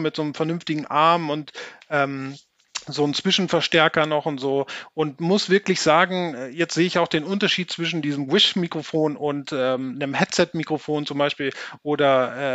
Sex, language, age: male, German, 30-49